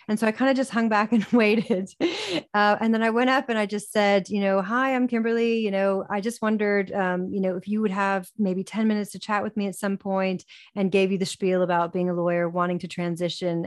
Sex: female